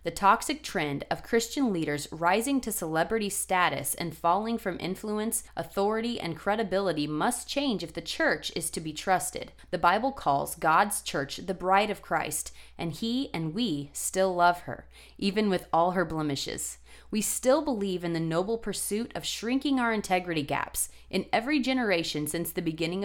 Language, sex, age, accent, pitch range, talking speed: English, female, 30-49, American, 165-225 Hz, 170 wpm